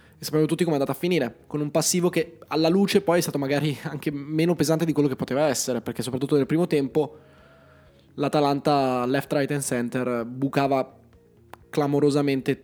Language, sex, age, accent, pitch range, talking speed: Italian, male, 20-39, native, 125-155 Hz, 175 wpm